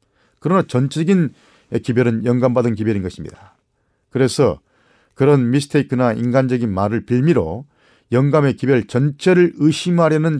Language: Korean